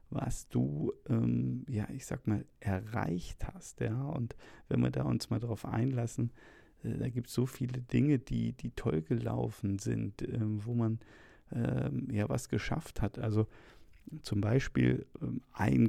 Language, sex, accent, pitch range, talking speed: German, male, German, 105-125 Hz, 160 wpm